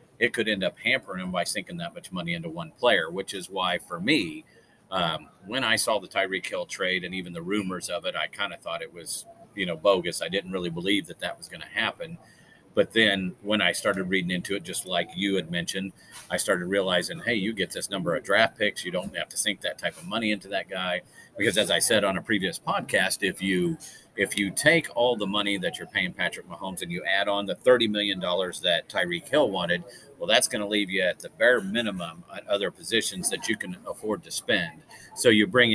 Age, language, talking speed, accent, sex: 40-59, English, 235 wpm, American, male